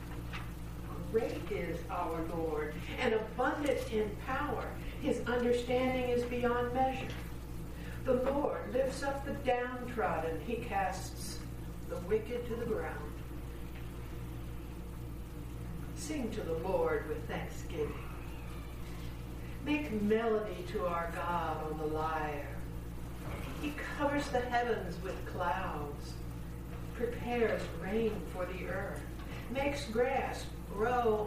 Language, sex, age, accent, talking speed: English, female, 60-79, American, 105 wpm